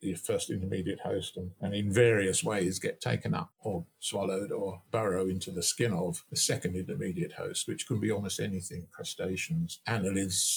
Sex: male